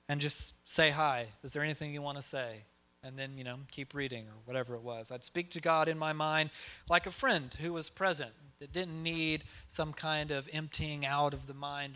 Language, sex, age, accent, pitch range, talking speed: English, male, 30-49, American, 140-175 Hz, 225 wpm